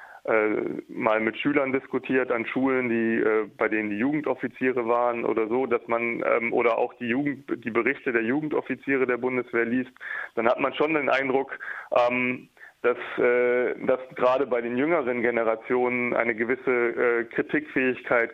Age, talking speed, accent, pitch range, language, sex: 20-39, 140 wpm, German, 115-125 Hz, German, male